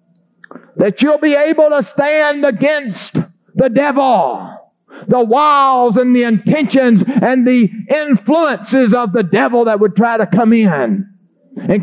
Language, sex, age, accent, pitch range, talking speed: English, male, 50-69, American, 210-280 Hz, 135 wpm